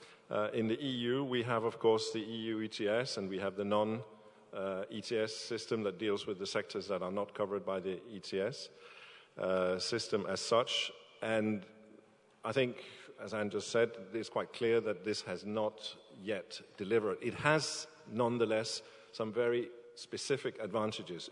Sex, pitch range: male, 105-120 Hz